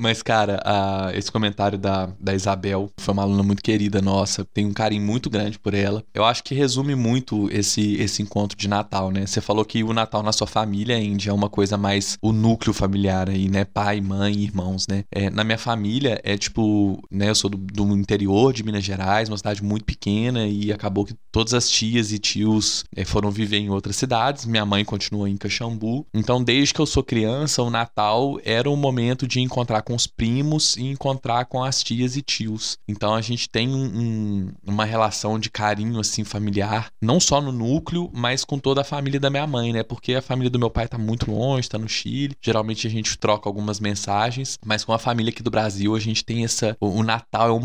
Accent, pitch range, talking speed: Brazilian, 105-125 Hz, 225 wpm